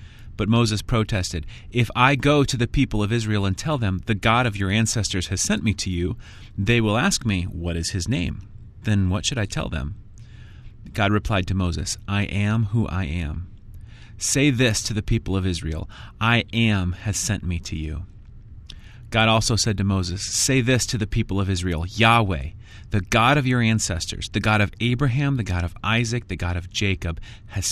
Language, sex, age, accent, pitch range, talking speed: English, male, 30-49, American, 95-115 Hz, 200 wpm